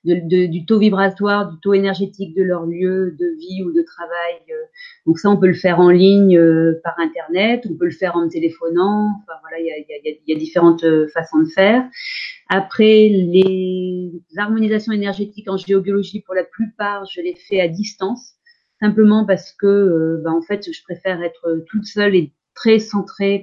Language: French